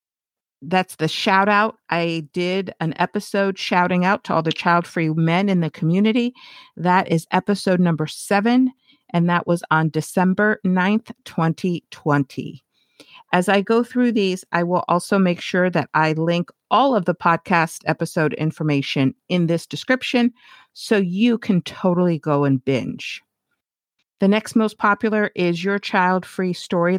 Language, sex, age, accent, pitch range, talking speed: English, female, 50-69, American, 165-215 Hz, 150 wpm